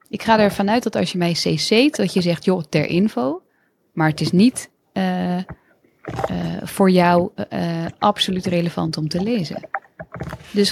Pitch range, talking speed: 165-200 Hz, 175 wpm